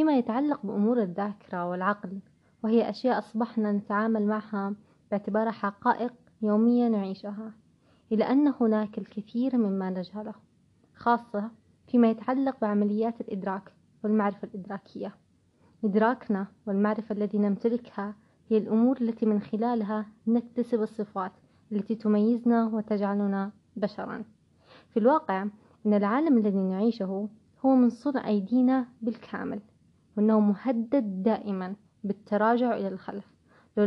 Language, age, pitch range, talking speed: Arabic, 20-39, 205-235 Hz, 105 wpm